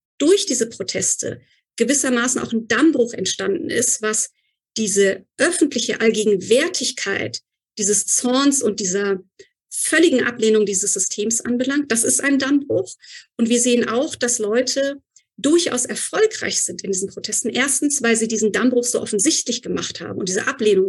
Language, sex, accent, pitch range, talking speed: German, female, German, 205-275 Hz, 145 wpm